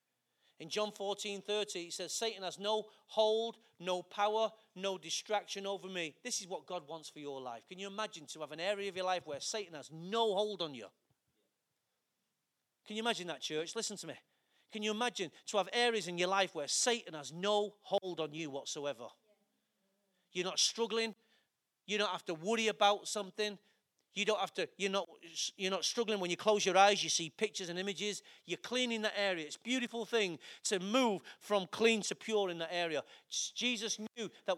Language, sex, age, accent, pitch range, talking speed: English, male, 40-59, British, 175-220 Hz, 200 wpm